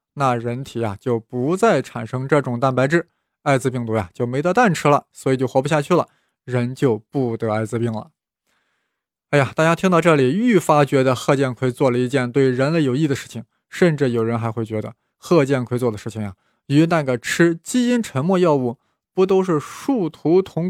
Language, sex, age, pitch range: Chinese, male, 20-39, 125-170 Hz